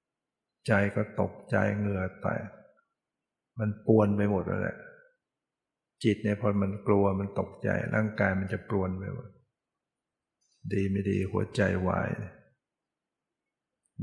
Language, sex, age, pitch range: Thai, male, 60-79, 100-110 Hz